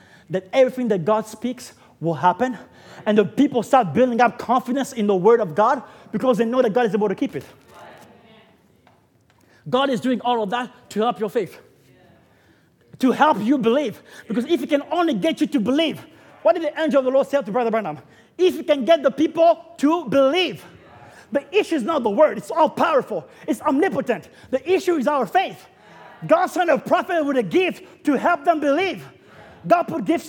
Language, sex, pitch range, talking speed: English, male, 190-315 Hz, 200 wpm